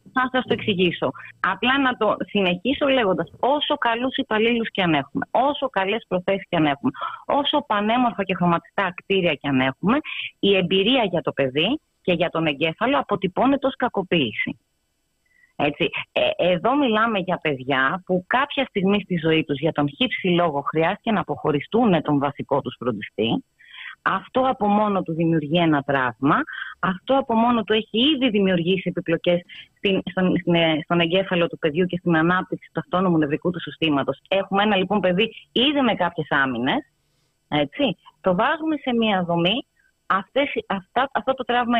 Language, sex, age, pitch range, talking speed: Greek, female, 30-49, 165-240 Hz, 160 wpm